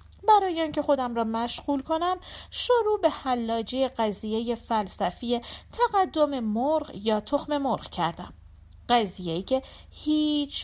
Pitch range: 185-285 Hz